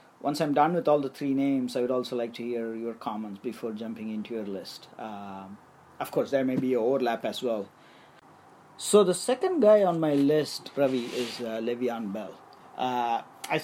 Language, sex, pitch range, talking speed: English, male, 115-140 Hz, 195 wpm